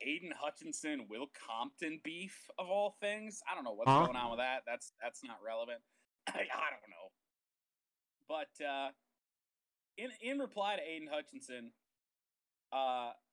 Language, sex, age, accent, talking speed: English, male, 30-49, American, 145 wpm